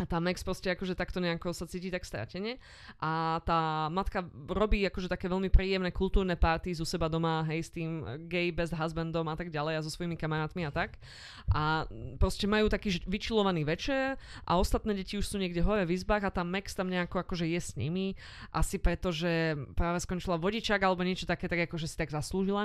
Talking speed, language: 205 wpm, Slovak